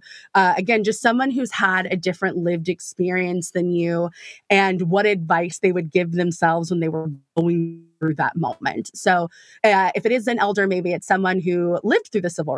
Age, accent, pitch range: 20-39, American, 180-225 Hz